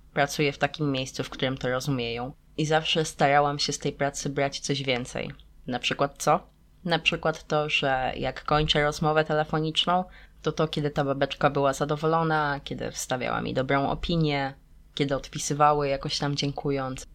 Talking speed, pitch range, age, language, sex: 160 wpm, 125-155 Hz, 20-39, Polish, female